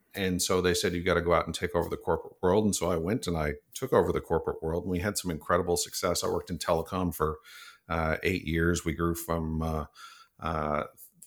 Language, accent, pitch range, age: English, American, 80-90 Hz, 50-69